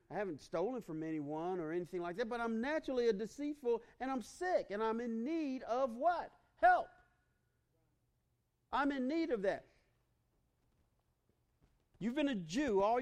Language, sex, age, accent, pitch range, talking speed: English, male, 40-59, American, 140-210 Hz, 155 wpm